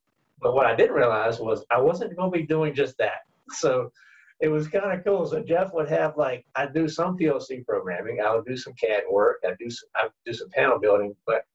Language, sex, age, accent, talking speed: English, male, 50-69, American, 235 wpm